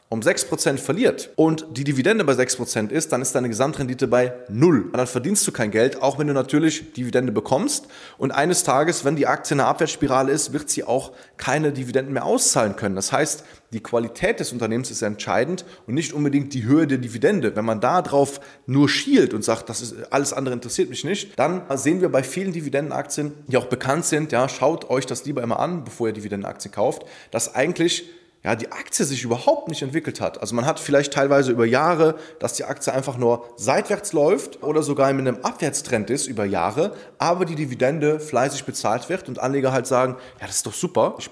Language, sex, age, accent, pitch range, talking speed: German, male, 20-39, German, 120-155 Hz, 205 wpm